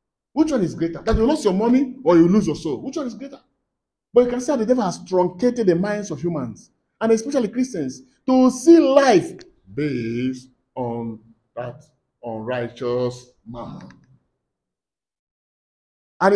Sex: male